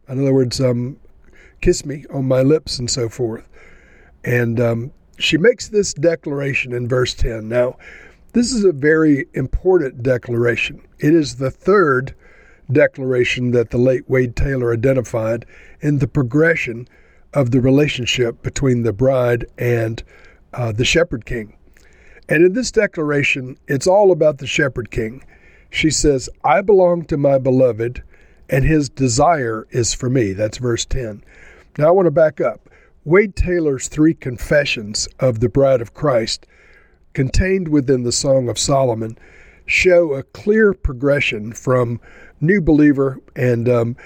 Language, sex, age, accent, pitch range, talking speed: English, male, 60-79, American, 120-150 Hz, 150 wpm